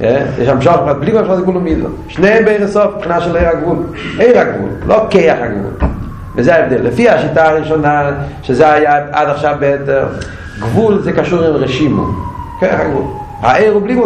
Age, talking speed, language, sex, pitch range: 40-59, 165 wpm, Hebrew, male, 145-220 Hz